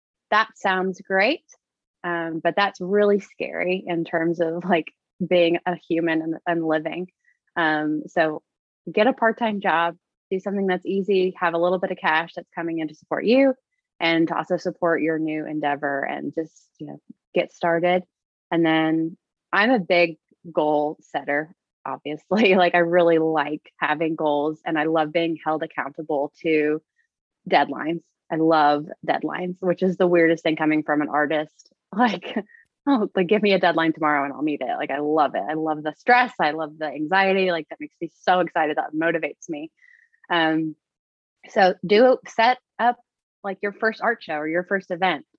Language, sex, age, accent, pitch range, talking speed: English, female, 20-39, American, 155-190 Hz, 175 wpm